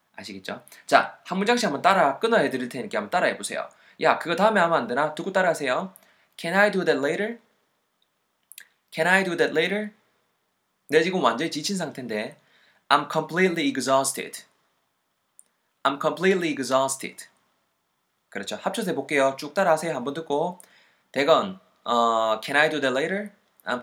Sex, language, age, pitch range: male, Korean, 20-39, 125-190 Hz